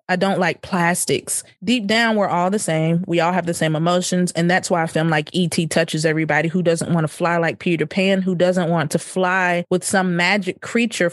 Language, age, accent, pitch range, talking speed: English, 20-39, American, 165-190 Hz, 225 wpm